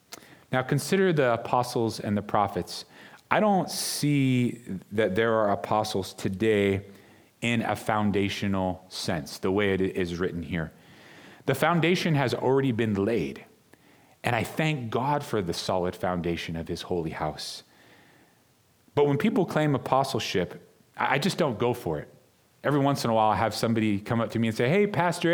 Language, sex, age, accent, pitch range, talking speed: English, male, 30-49, American, 110-140 Hz, 165 wpm